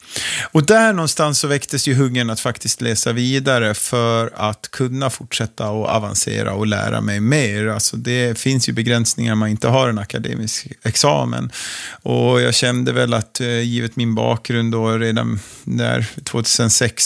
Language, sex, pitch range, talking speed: Swedish, male, 105-120 Hz, 150 wpm